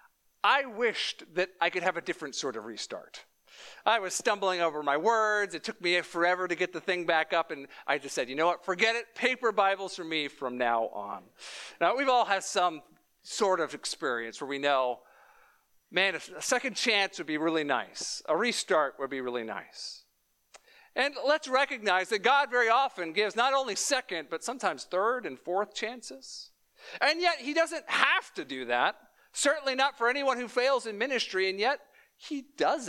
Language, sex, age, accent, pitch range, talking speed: English, male, 50-69, American, 175-250 Hz, 190 wpm